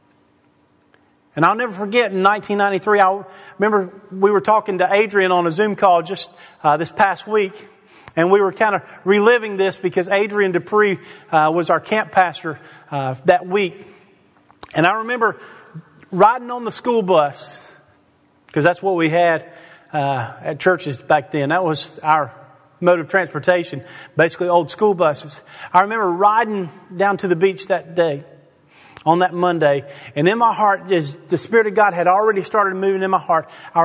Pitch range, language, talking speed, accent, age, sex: 150-195 Hz, English, 170 wpm, American, 40-59, male